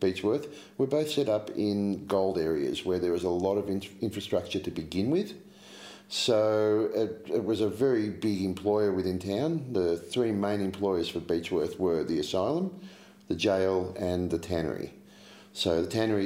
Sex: male